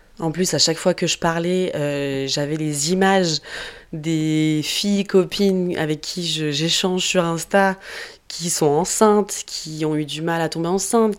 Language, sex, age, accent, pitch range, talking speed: French, female, 20-39, French, 155-180 Hz, 170 wpm